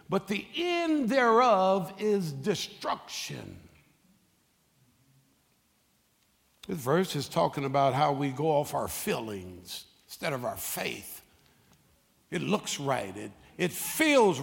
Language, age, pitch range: English, 60-79, 140-220 Hz